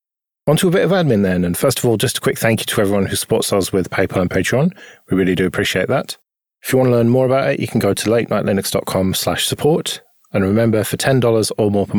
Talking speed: 255 wpm